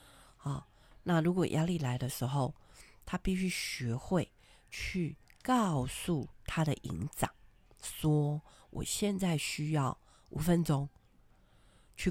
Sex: female